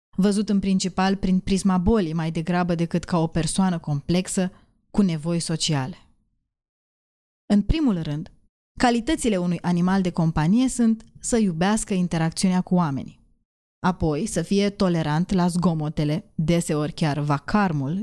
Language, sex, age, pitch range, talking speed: Romanian, female, 20-39, 170-205 Hz, 130 wpm